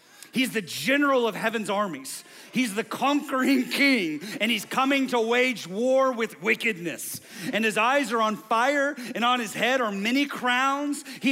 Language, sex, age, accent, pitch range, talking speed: English, male, 40-59, American, 205-280 Hz, 170 wpm